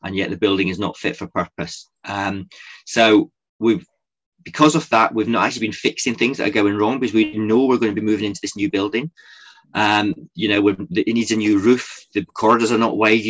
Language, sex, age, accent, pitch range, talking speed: English, male, 30-49, British, 100-115 Hz, 230 wpm